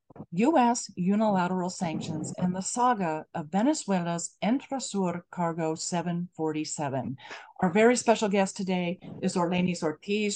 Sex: female